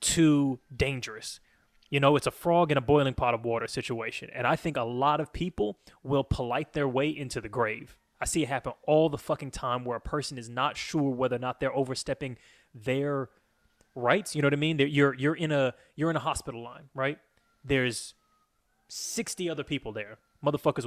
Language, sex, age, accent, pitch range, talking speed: English, male, 20-39, American, 125-150 Hz, 200 wpm